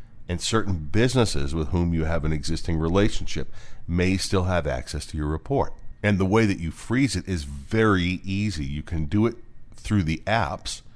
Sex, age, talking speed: male, 40-59, 185 wpm